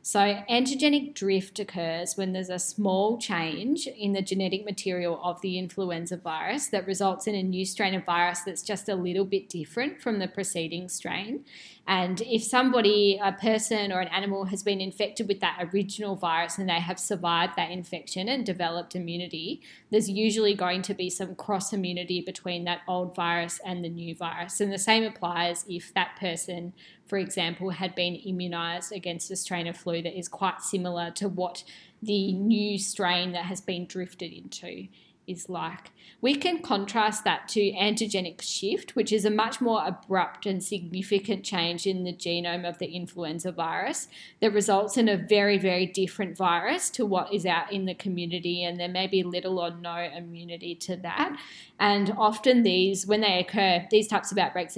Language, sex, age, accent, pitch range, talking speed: English, female, 10-29, Australian, 175-205 Hz, 180 wpm